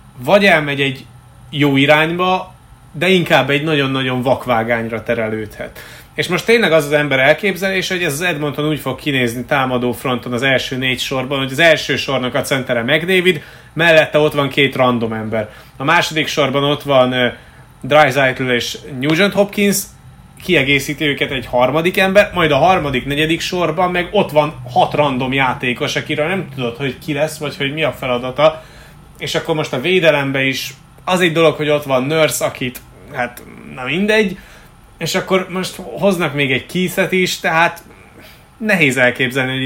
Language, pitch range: Hungarian, 130-160 Hz